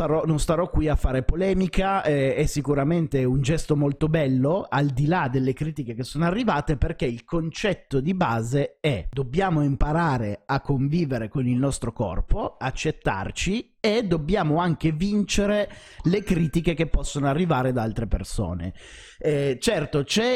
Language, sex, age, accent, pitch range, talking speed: Italian, male, 30-49, native, 130-165 Hz, 150 wpm